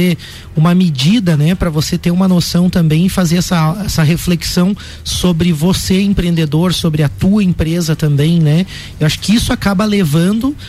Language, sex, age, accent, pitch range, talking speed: Portuguese, male, 30-49, Brazilian, 165-195 Hz, 165 wpm